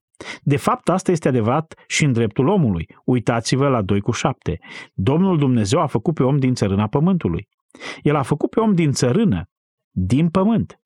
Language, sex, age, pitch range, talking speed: Romanian, male, 30-49, 115-165 Hz, 175 wpm